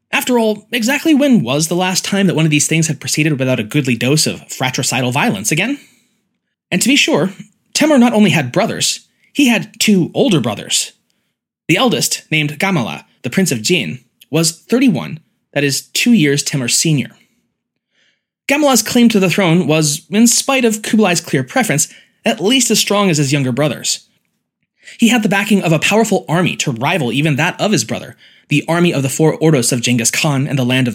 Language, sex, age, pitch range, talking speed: English, male, 20-39, 145-215 Hz, 195 wpm